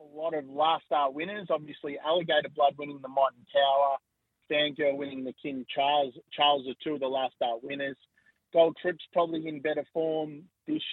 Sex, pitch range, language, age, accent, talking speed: male, 130-160 Hz, English, 30-49, Australian, 180 wpm